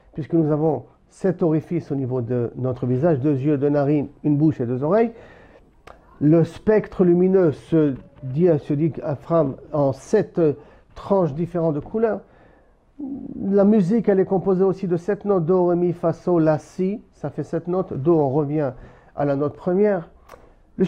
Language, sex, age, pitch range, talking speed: French, male, 50-69, 150-200 Hz, 170 wpm